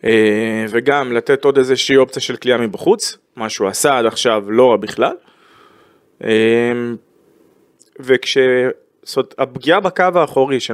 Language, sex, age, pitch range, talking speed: Hebrew, male, 20-39, 115-165 Hz, 115 wpm